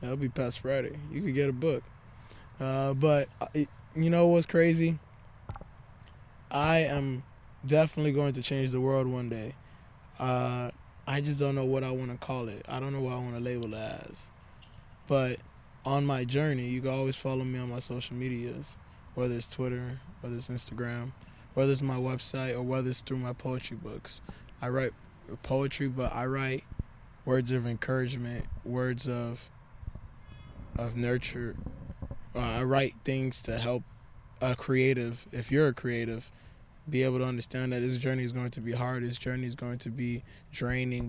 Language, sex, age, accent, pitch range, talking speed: English, male, 20-39, American, 120-135 Hz, 175 wpm